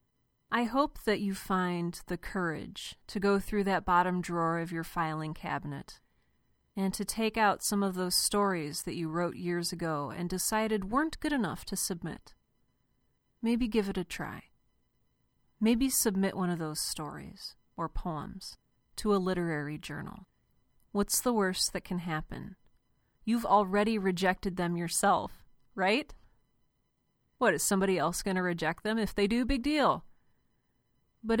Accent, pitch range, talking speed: American, 165-200 Hz, 155 wpm